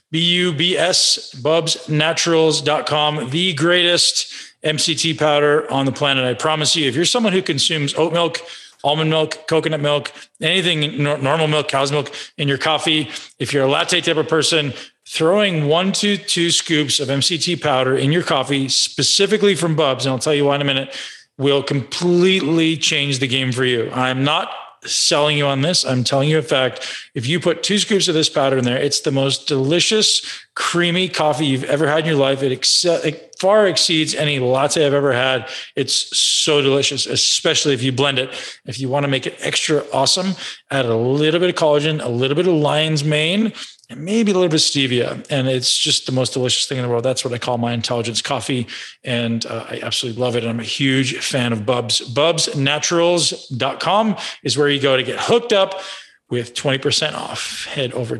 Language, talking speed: English, 195 wpm